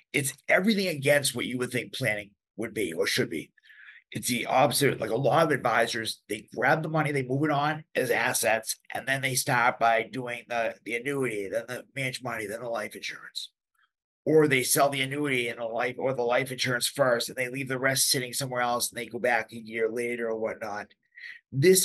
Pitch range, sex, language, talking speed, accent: 120-150 Hz, male, English, 215 wpm, American